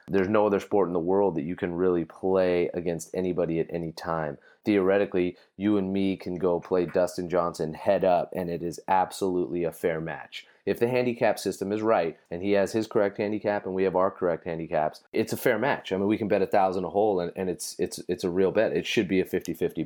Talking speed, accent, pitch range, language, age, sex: 240 wpm, American, 85-100 Hz, English, 30-49, male